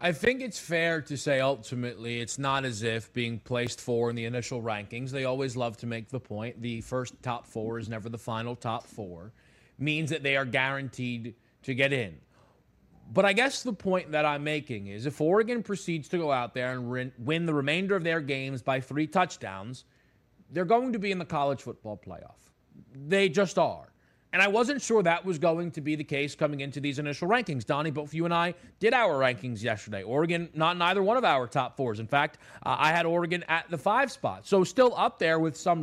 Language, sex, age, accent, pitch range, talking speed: English, male, 30-49, American, 125-190 Hz, 220 wpm